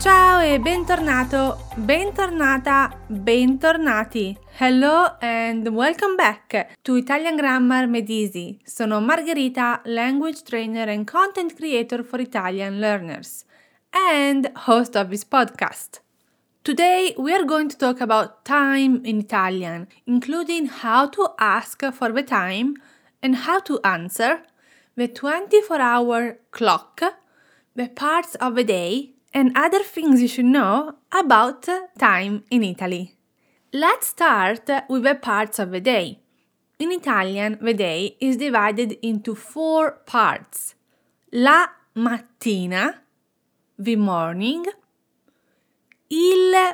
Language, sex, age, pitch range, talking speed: English, female, 30-49, 220-315 Hz, 115 wpm